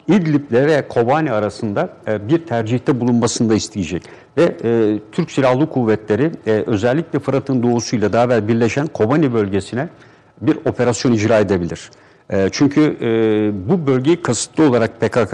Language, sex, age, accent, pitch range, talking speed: Turkish, male, 60-79, native, 110-135 Hz, 120 wpm